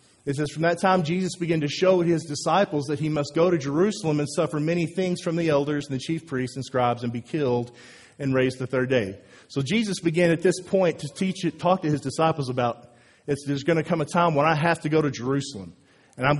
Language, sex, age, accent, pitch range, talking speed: English, male, 40-59, American, 135-185 Hz, 245 wpm